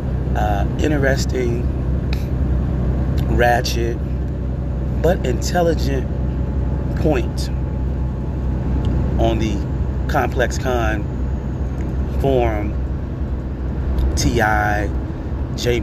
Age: 30-49